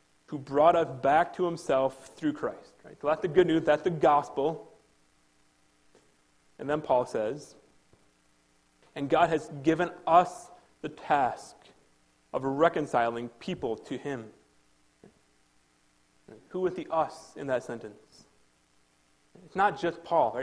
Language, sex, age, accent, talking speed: English, male, 30-49, American, 125 wpm